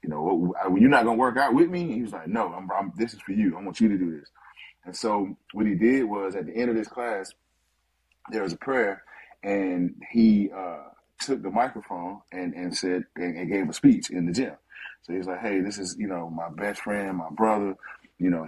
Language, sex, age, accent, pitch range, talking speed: English, male, 30-49, American, 90-110 Hz, 245 wpm